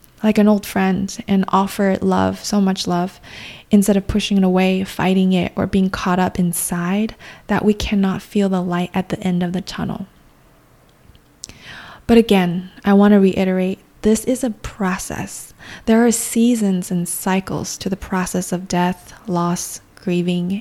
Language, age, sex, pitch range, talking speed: English, 20-39, female, 185-210 Hz, 160 wpm